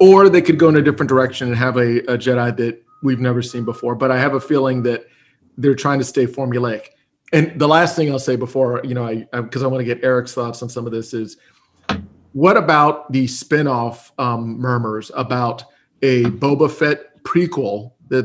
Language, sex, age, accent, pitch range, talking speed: English, male, 40-59, American, 120-140 Hz, 210 wpm